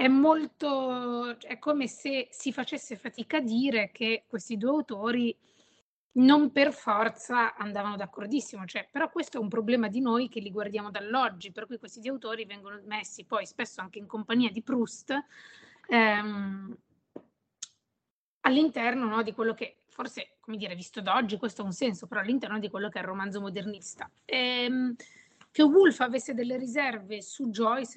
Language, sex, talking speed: Italian, female, 165 wpm